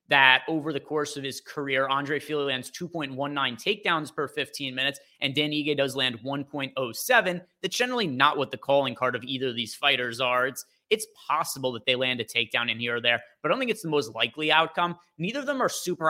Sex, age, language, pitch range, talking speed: male, 30-49, English, 130-170 Hz, 225 wpm